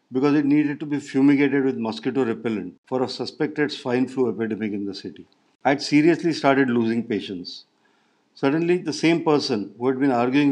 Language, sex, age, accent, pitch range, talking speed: English, male, 50-69, Indian, 115-145 Hz, 185 wpm